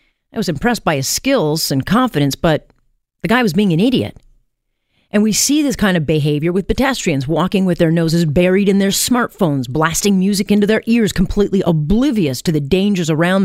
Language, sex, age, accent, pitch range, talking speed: English, female, 40-59, American, 155-205 Hz, 190 wpm